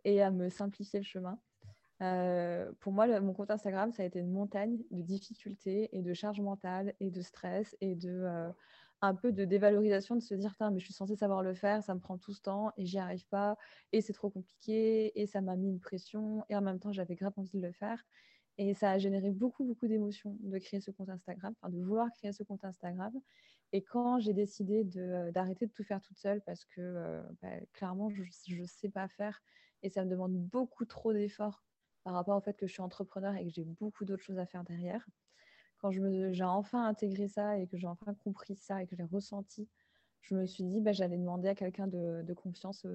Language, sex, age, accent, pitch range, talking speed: French, female, 20-39, French, 185-210 Hz, 235 wpm